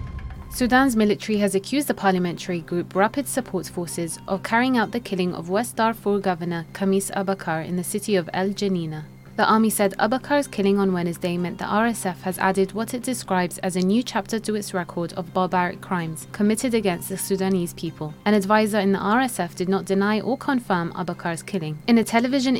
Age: 20-39